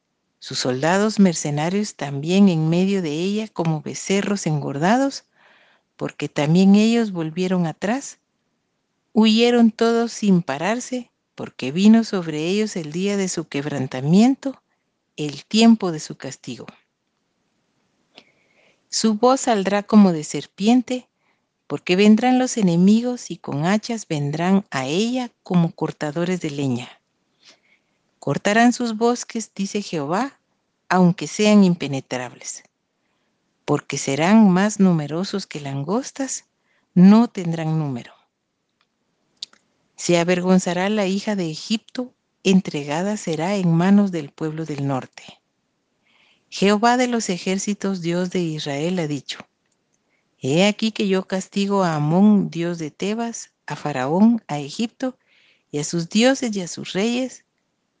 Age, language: 50-69, Spanish